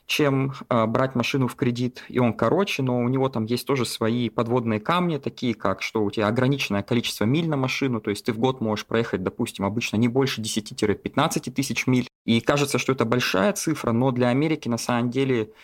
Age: 20-39